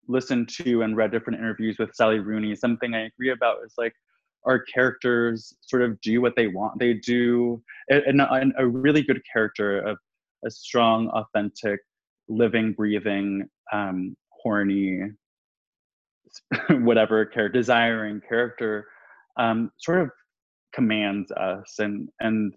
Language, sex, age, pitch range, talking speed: English, male, 20-39, 105-125 Hz, 130 wpm